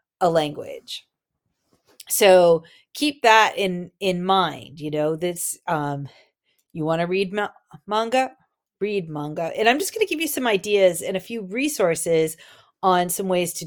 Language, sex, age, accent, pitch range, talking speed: English, female, 40-59, American, 170-220 Hz, 160 wpm